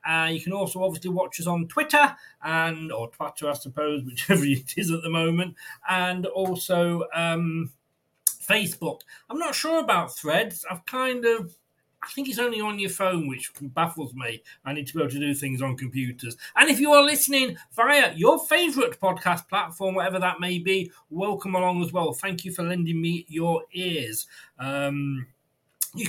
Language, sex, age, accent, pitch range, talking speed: English, male, 40-59, British, 145-195 Hz, 180 wpm